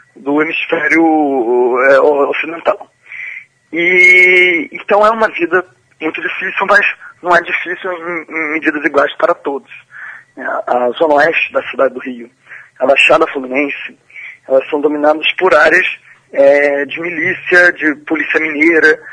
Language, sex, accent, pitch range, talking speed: Portuguese, male, Brazilian, 135-170 Hz, 135 wpm